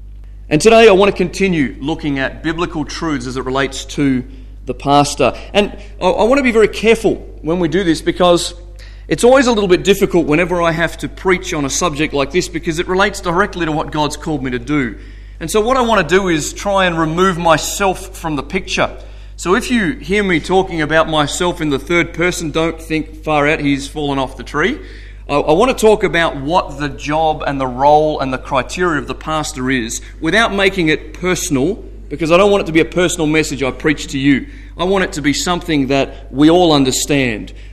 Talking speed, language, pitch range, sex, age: 220 wpm, English, 130-175 Hz, male, 30-49